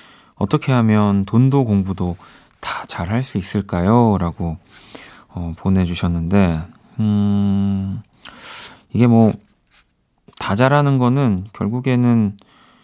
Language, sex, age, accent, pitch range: Korean, male, 40-59, native, 90-120 Hz